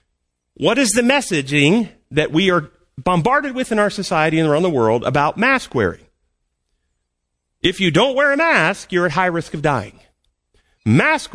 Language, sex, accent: English, male, American